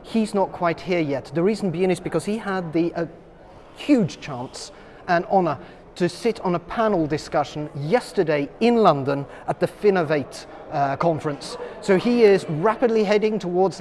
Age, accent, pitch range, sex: 30-49, British, 160-195 Hz, male